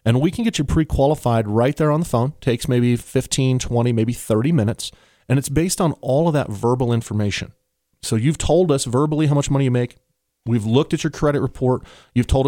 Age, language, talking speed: 40-59, English, 215 wpm